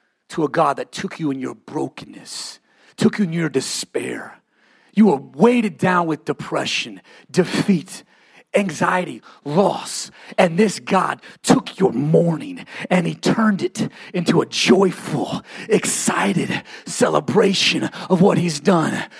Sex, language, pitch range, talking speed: male, English, 205-305 Hz, 130 wpm